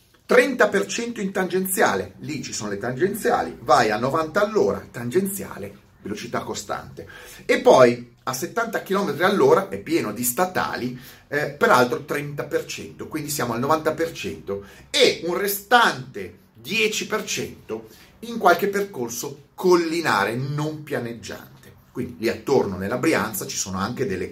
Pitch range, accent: 120-195 Hz, native